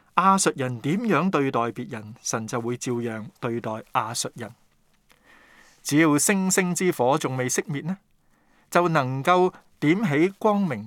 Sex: male